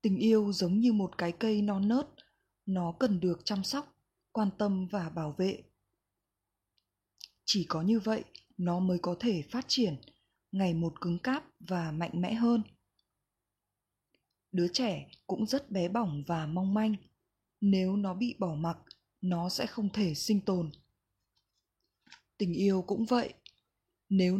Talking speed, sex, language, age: 150 wpm, female, Vietnamese, 20-39